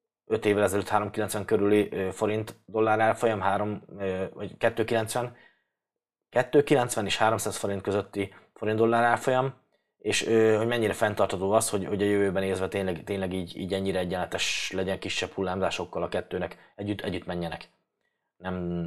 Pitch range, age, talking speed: 95-115 Hz, 20-39, 140 wpm